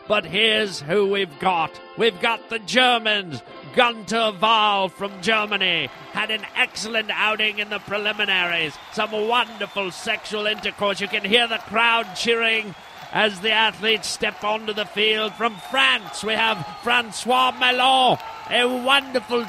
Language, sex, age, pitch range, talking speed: English, male, 40-59, 210-235 Hz, 140 wpm